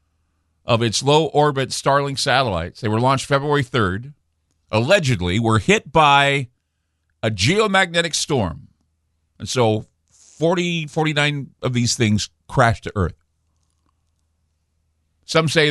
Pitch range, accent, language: 85-145 Hz, American, English